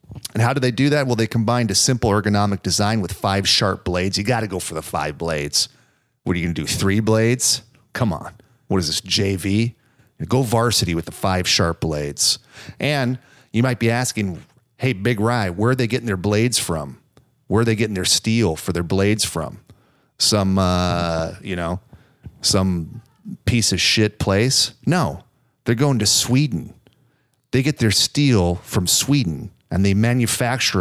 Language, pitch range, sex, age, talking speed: English, 95-120 Hz, male, 40-59, 185 wpm